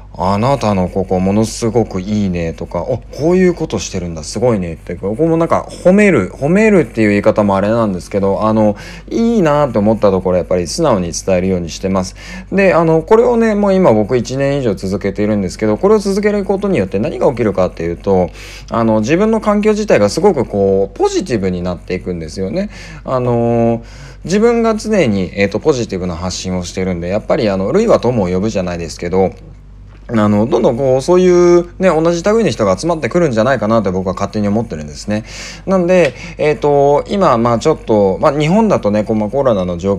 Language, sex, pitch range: Japanese, male, 95-165 Hz